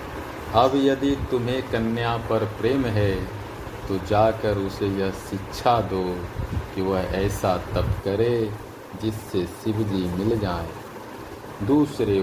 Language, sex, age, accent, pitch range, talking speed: Hindi, male, 50-69, native, 95-115 Hz, 115 wpm